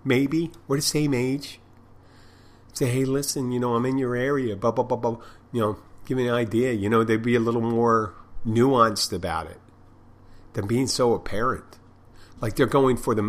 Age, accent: 50-69, American